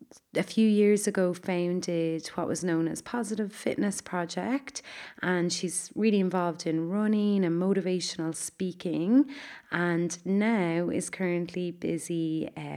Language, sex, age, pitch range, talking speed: English, female, 30-49, 165-205 Hz, 125 wpm